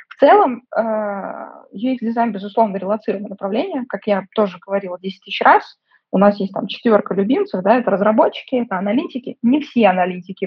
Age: 20-39